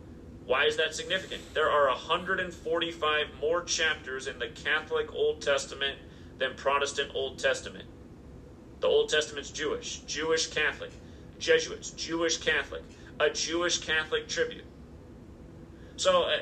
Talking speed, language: 115 wpm, English